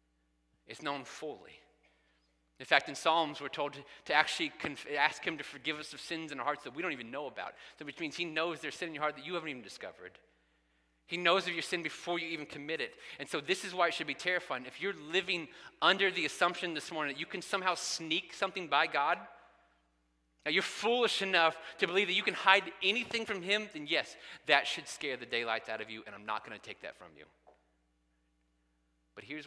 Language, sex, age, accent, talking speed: English, male, 30-49, American, 225 wpm